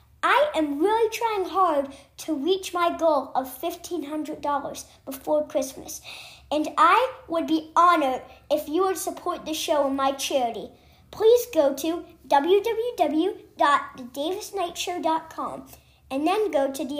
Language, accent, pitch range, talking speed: English, American, 280-340 Hz, 125 wpm